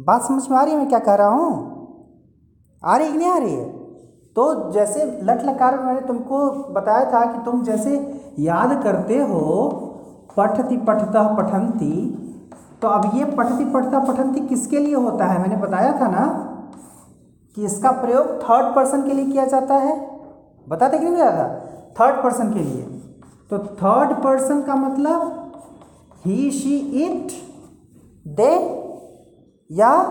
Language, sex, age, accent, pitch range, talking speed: Hindi, male, 40-59, native, 225-300 Hz, 155 wpm